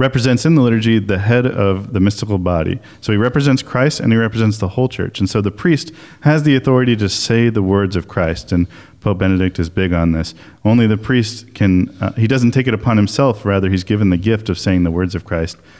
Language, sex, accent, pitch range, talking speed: English, male, American, 95-120 Hz, 235 wpm